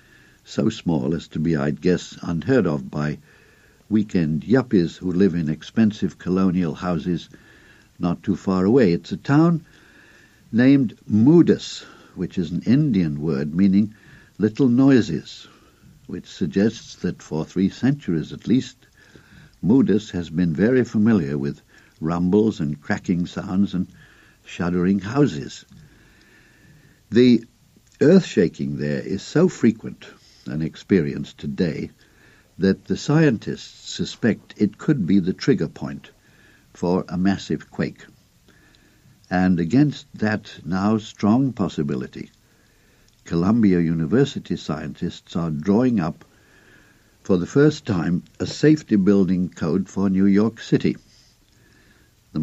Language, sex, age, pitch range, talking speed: English, male, 60-79, 85-110 Hz, 120 wpm